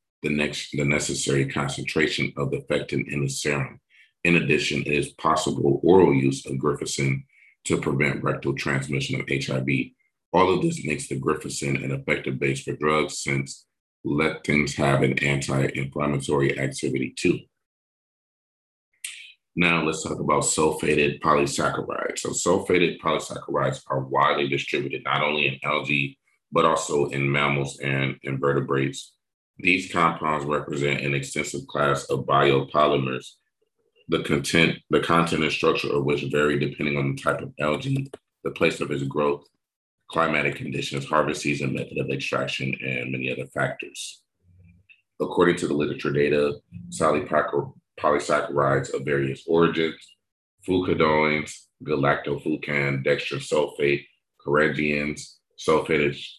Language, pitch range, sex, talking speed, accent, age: English, 70-75 Hz, male, 125 wpm, American, 40-59